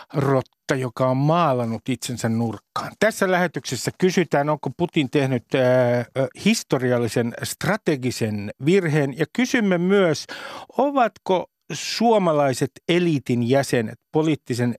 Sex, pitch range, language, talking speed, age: male, 130-175 Hz, Finnish, 95 wpm, 50-69